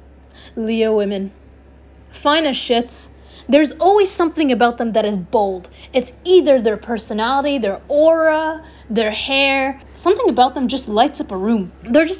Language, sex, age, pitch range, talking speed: English, female, 20-39, 210-280 Hz, 150 wpm